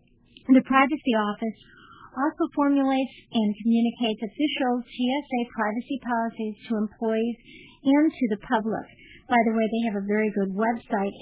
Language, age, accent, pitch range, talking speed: English, 50-69, American, 220-265 Hz, 145 wpm